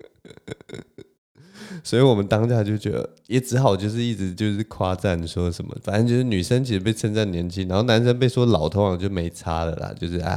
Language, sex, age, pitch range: Chinese, male, 20-39, 90-115 Hz